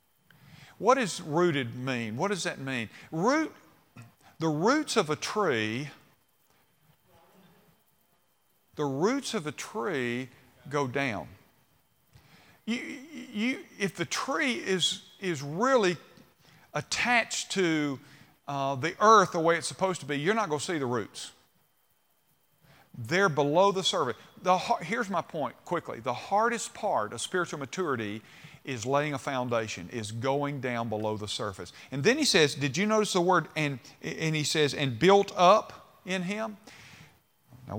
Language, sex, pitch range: English, male, 140-205 Hz